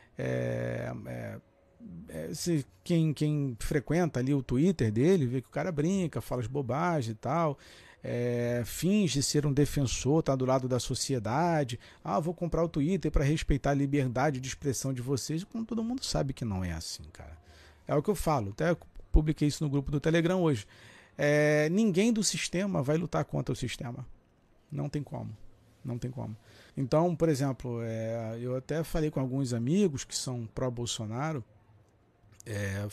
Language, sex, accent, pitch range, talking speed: Portuguese, male, Brazilian, 120-160 Hz, 175 wpm